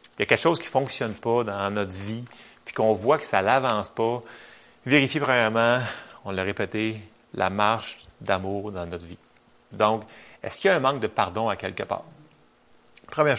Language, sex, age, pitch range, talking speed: French, male, 30-49, 100-130 Hz, 195 wpm